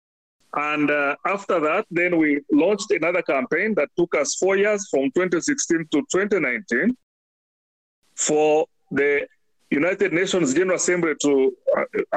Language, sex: English, male